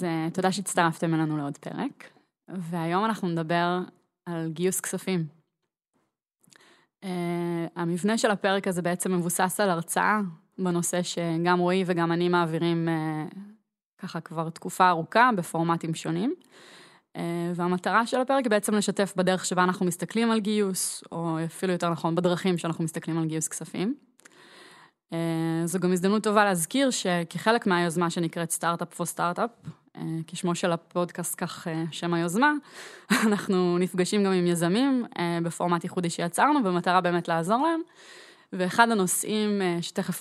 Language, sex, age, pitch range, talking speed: Hebrew, female, 20-39, 170-190 Hz, 135 wpm